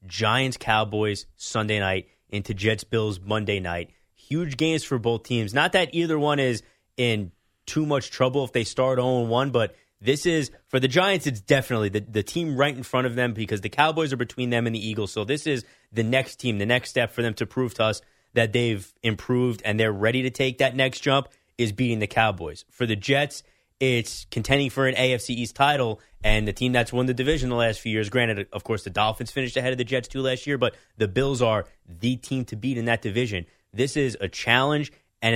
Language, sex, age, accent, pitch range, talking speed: English, male, 20-39, American, 105-130 Hz, 220 wpm